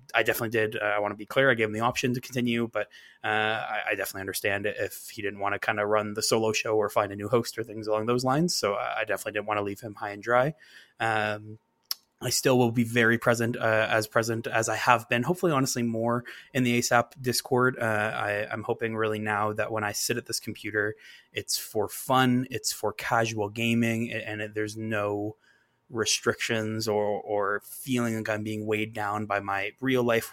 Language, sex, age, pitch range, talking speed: English, male, 20-39, 105-115 Hz, 215 wpm